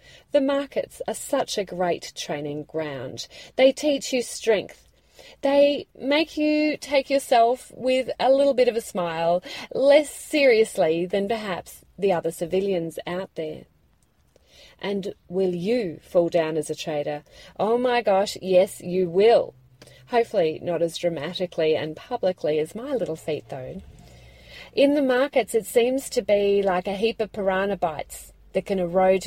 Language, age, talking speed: English, 30-49, 150 wpm